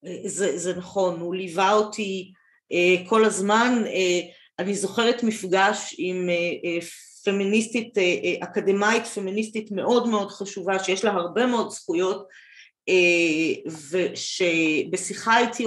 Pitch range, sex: 175-220 Hz, female